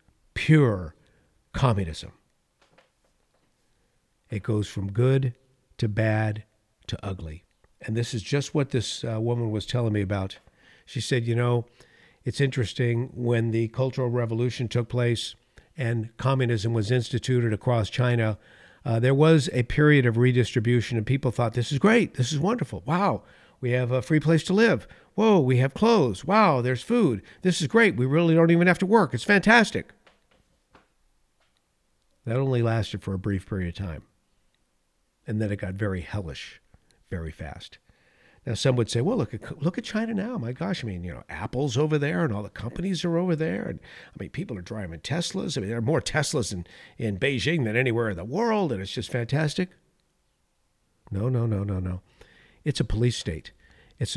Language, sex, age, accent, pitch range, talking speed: English, male, 50-69, American, 105-145 Hz, 180 wpm